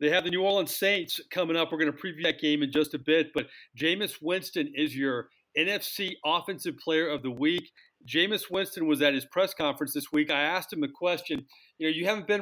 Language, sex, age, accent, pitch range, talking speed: English, male, 40-59, American, 145-190 Hz, 230 wpm